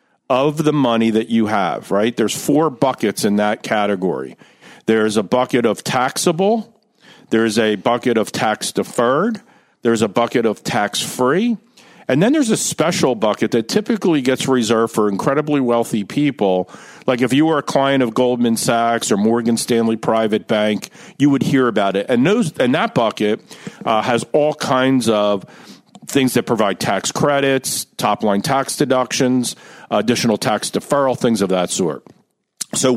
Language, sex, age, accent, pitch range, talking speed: English, male, 50-69, American, 115-150 Hz, 160 wpm